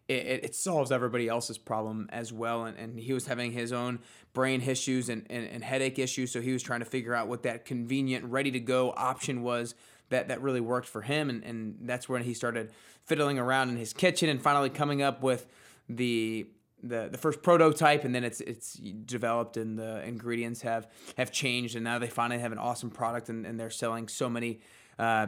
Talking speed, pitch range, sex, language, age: 210 wpm, 115-140 Hz, male, English, 20-39